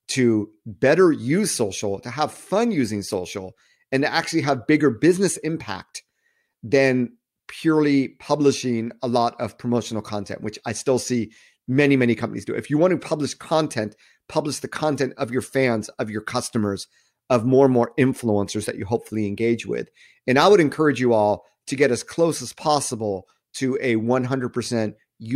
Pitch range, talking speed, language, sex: 110-140 Hz, 170 wpm, English, male